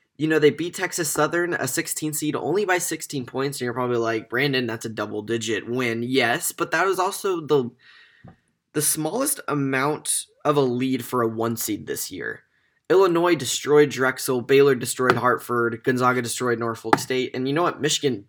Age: 10-29